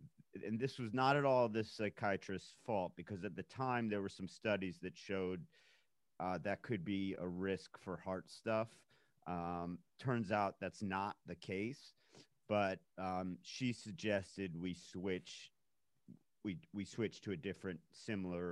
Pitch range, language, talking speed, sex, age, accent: 90-110 Hz, English, 155 wpm, male, 40-59, American